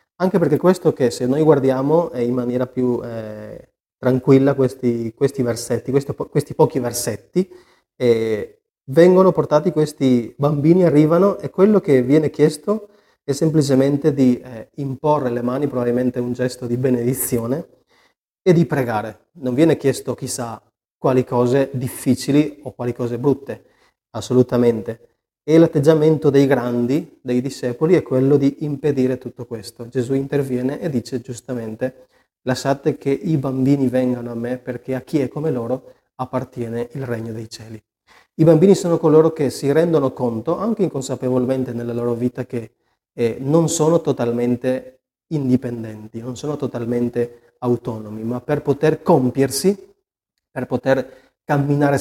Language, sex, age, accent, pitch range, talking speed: Italian, male, 30-49, native, 120-150 Hz, 140 wpm